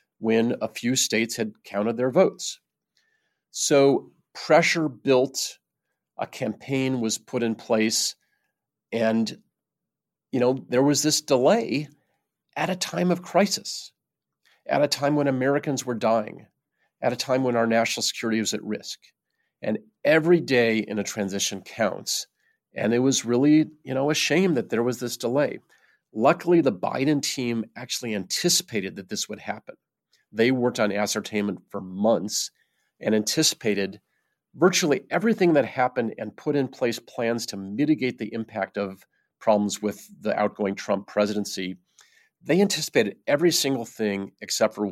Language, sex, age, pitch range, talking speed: English, male, 40-59, 105-140 Hz, 150 wpm